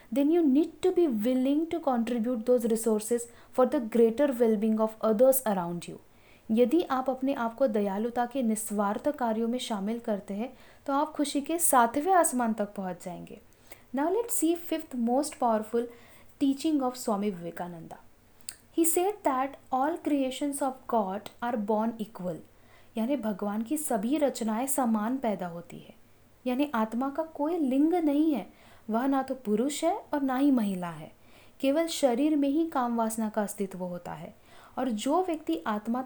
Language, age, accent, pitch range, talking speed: Hindi, 10-29, native, 225-295 Hz, 160 wpm